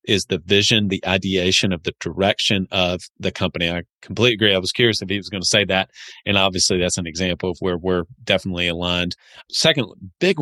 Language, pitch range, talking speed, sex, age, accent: English, 90-110 Hz, 205 wpm, male, 40-59, American